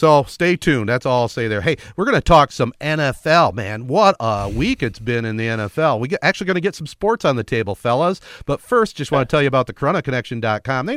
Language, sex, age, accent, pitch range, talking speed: English, male, 40-59, American, 120-150 Hz, 255 wpm